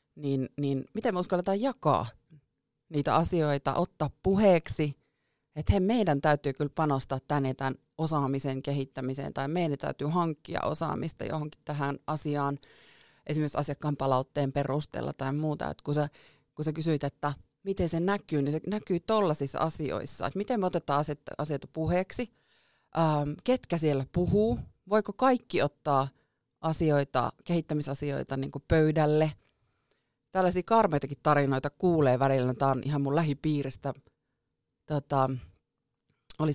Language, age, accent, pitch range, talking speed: Finnish, 30-49, native, 135-165 Hz, 125 wpm